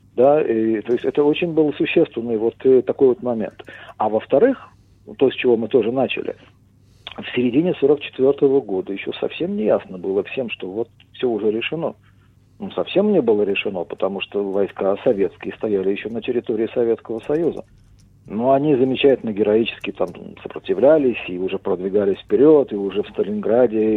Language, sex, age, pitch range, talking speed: English, male, 50-69, 105-145 Hz, 160 wpm